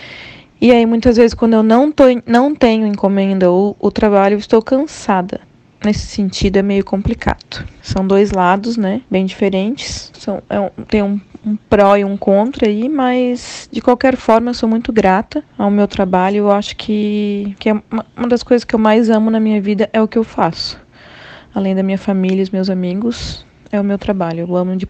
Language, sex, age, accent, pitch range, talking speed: Portuguese, female, 20-39, Brazilian, 195-225 Hz, 205 wpm